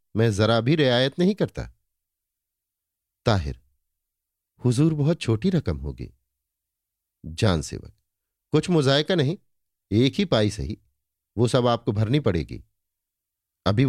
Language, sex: Hindi, male